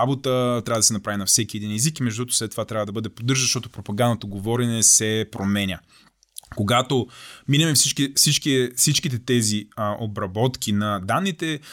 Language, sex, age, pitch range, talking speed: Bulgarian, male, 20-39, 110-130 Hz, 170 wpm